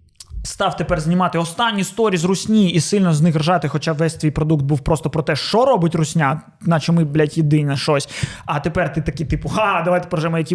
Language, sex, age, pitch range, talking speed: Ukrainian, male, 20-39, 160-210 Hz, 215 wpm